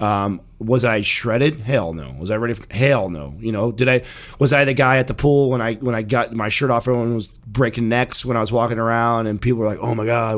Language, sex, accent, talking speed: English, male, American, 265 wpm